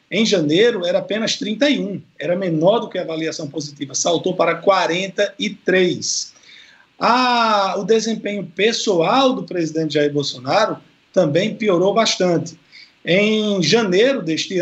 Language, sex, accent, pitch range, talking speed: Portuguese, male, Brazilian, 170-220 Hz, 120 wpm